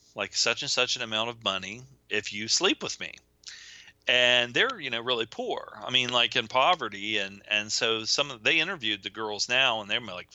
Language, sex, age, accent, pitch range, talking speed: English, male, 40-59, American, 105-130 Hz, 215 wpm